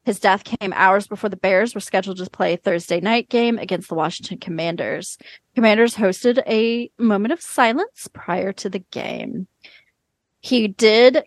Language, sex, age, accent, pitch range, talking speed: English, female, 30-49, American, 190-250 Hz, 165 wpm